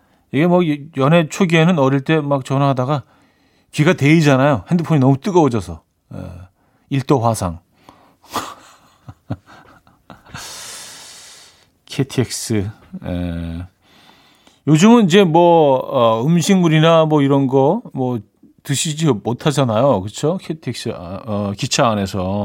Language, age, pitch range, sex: Korean, 40-59, 110-155 Hz, male